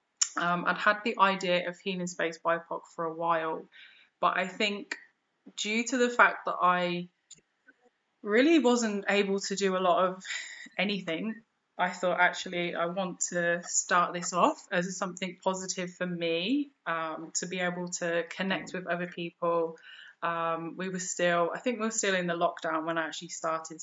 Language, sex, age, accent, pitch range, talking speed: English, female, 20-39, British, 170-200 Hz, 175 wpm